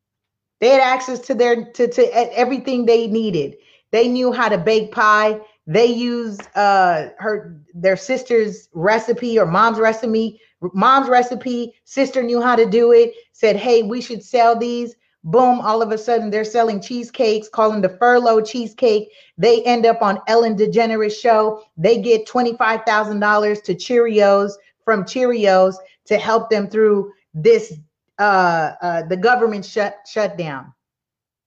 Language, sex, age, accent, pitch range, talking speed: English, female, 30-49, American, 210-265 Hz, 155 wpm